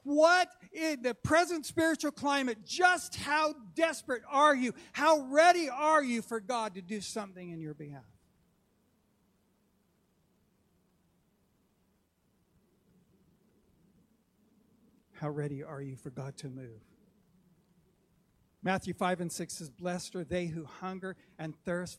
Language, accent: English, American